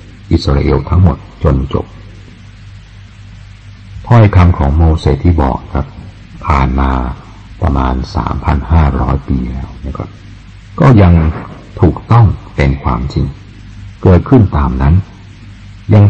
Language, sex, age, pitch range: Thai, male, 60-79, 75-100 Hz